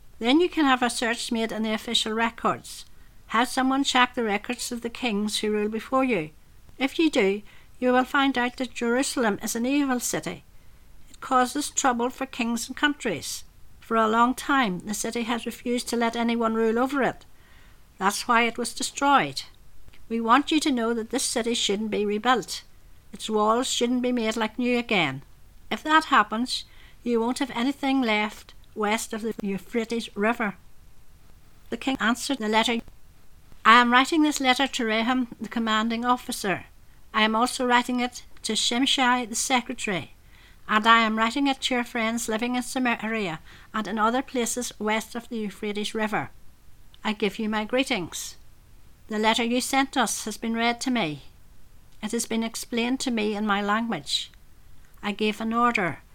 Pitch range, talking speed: 215-250 Hz, 175 wpm